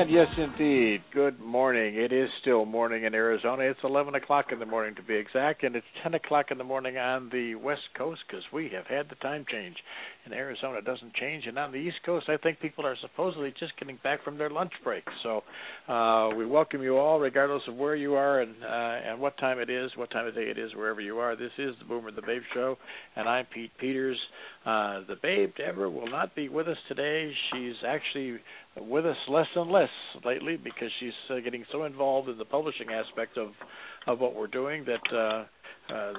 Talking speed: 220 wpm